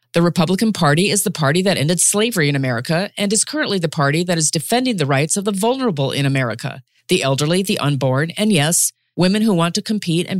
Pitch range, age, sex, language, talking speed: 155-215 Hz, 40-59, female, English, 220 wpm